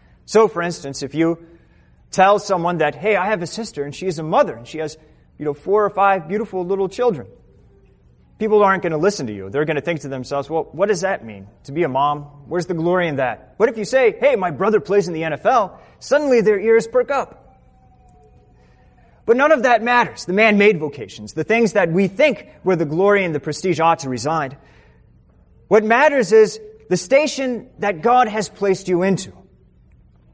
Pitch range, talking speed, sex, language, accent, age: 145-220 Hz, 210 wpm, male, English, American, 30-49